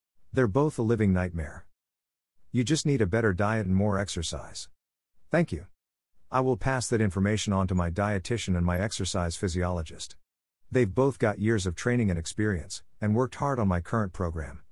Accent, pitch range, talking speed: American, 90-115 Hz, 180 wpm